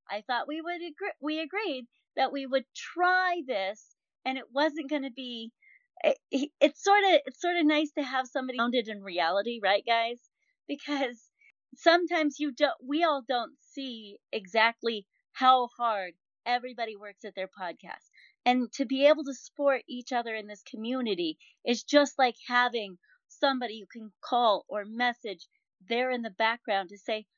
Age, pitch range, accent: 30-49, 230-295 Hz, American